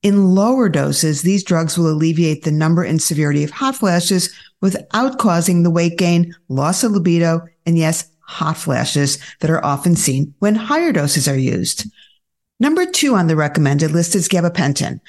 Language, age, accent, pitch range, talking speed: English, 50-69, American, 155-195 Hz, 170 wpm